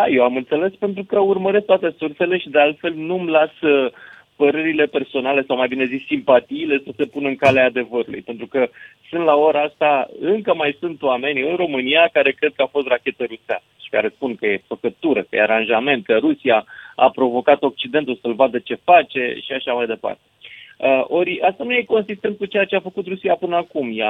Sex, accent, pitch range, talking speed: male, native, 125-175 Hz, 205 wpm